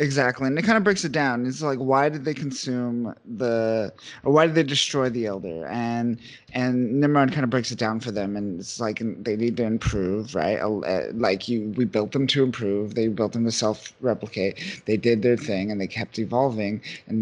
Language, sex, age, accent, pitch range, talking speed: English, male, 30-49, American, 110-130 Hz, 215 wpm